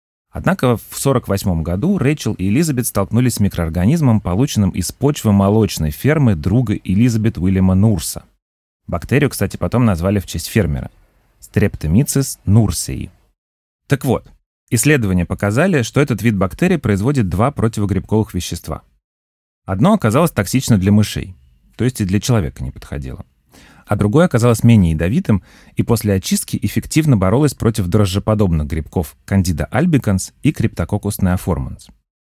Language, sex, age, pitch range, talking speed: Russian, male, 30-49, 85-115 Hz, 130 wpm